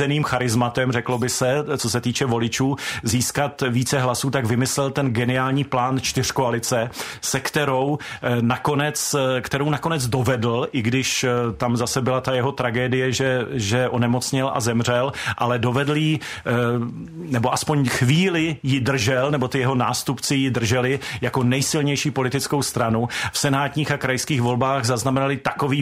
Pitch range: 125-140 Hz